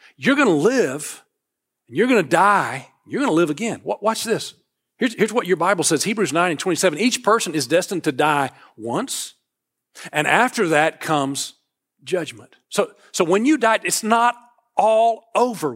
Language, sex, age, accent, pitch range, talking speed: English, male, 40-59, American, 150-195 Hz, 170 wpm